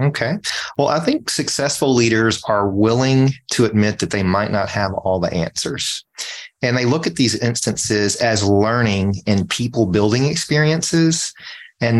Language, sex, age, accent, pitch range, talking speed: English, male, 30-49, American, 100-125 Hz, 155 wpm